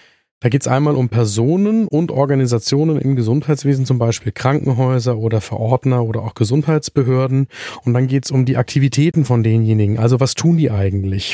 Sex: male